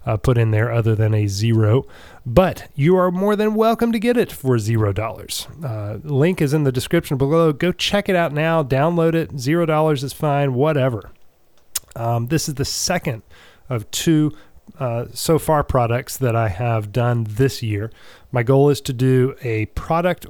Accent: American